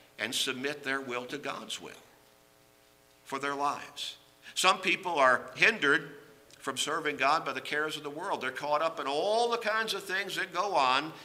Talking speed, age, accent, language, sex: 185 wpm, 50-69, American, English, male